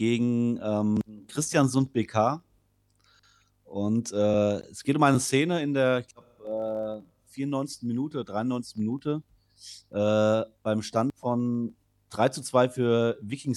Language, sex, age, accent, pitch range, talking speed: German, male, 30-49, German, 110-135 Hz, 130 wpm